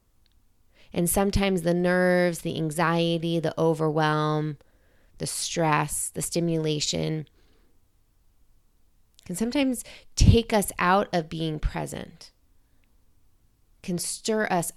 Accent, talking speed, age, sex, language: American, 95 wpm, 30-49, female, English